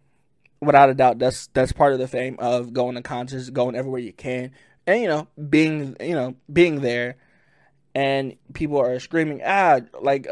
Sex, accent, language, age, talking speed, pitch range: male, American, English, 20-39, 180 wpm, 130-150 Hz